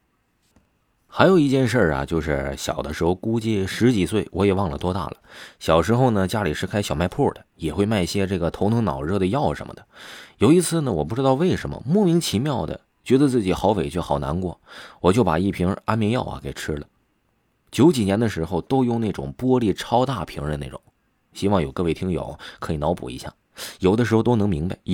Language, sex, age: Chinese, male, 30-49